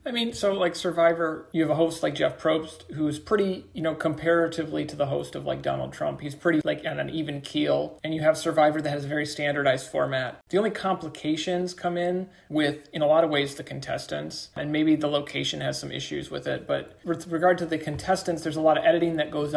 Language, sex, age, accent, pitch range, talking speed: English, male, 30-49, American, 140-165 Hz, 235 wpm